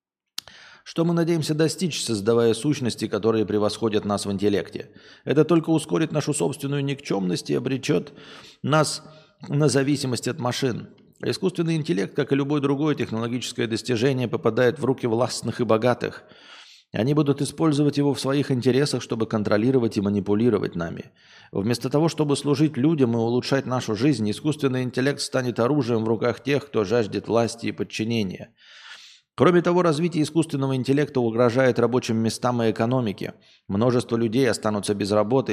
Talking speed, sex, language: 145 wpm, male, Russian